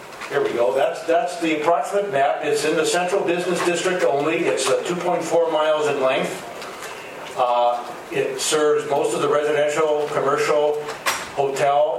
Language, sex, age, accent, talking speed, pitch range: English, male, 40-59, American, 145 wpm, 130-165 Hz